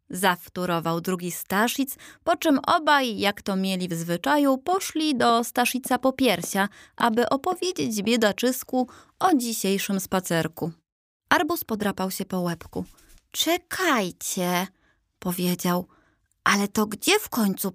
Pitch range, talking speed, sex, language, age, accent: 175-240 Hz, 115 wpm, female, Polish, 20-39, native